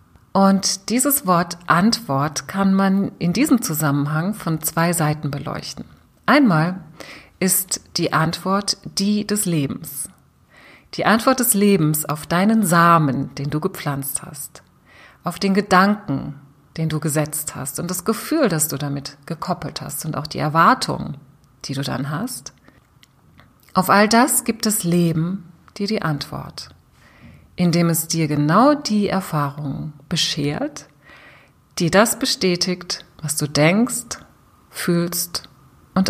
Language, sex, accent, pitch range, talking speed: German, female, German, 145-195 Hz, 130 wpm